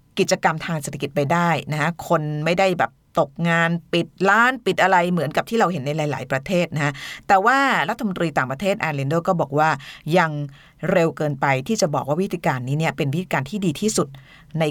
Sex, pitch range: female, 145-200 Hz